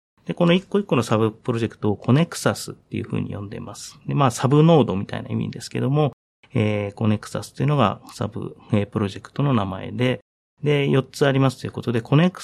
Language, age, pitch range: Japanese, 40-59, 110-140 Hz